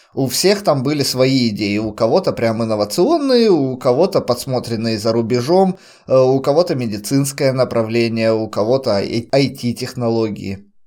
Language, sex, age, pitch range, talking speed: Russian, male, 20-39, 120-170 Hz, 120 wpm